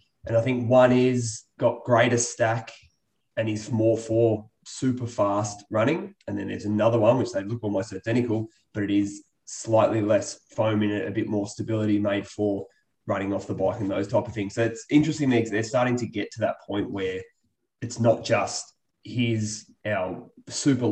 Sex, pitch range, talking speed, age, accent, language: male, 100-120 Hz, 190 wpm, 20-39, Australian, English